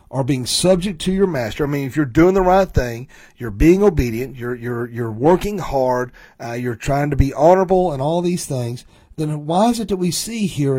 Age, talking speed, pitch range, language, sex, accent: 40-59, 220 wpm, 125-170 Hz, English, male, American